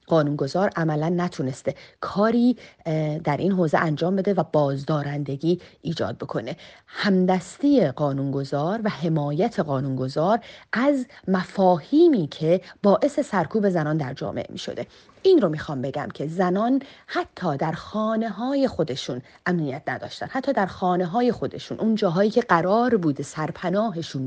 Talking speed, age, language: 125 wpm, 30-49, Persian